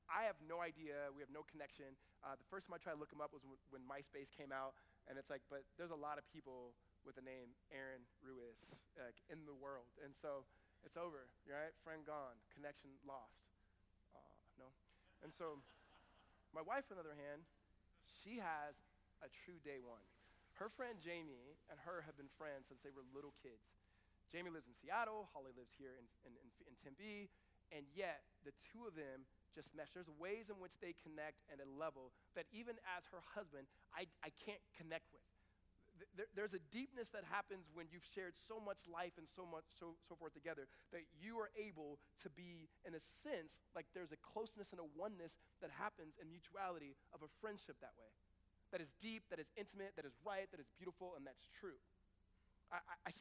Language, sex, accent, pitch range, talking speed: English, male, American, 130-180 Hz, 200 wpm